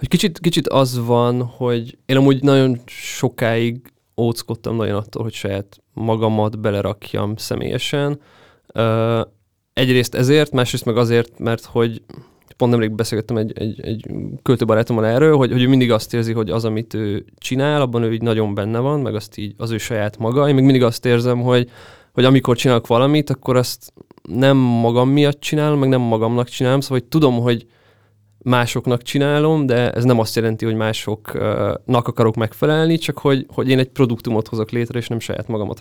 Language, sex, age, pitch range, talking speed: Hungarian, male, 20-39, 110-125 Hz, 175 wpm